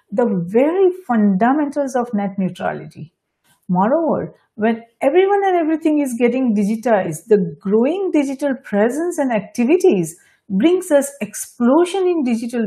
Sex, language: female, English